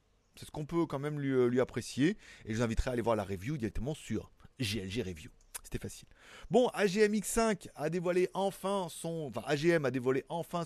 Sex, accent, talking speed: male, French, 205 wpm